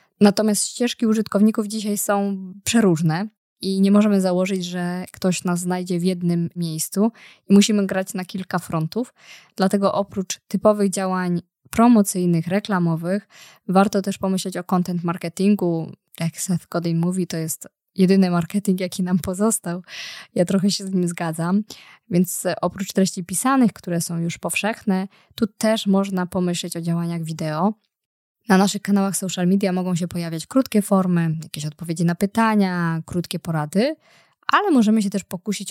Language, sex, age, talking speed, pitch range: Polish, female, 20-39, 150 wpm, 175-200 Hz